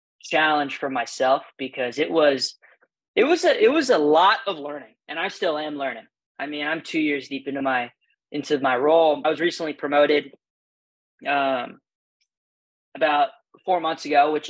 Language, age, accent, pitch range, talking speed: English, 20-39, American, 135-155 Hz, 170 wpm